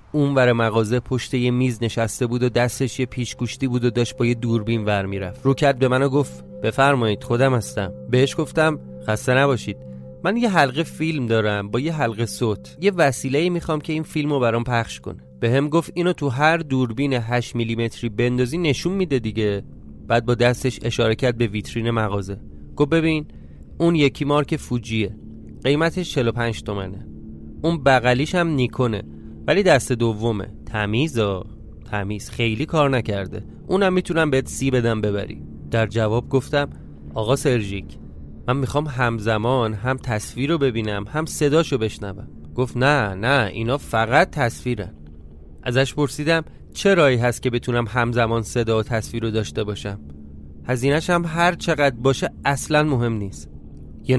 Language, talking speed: Persian, 140 wpm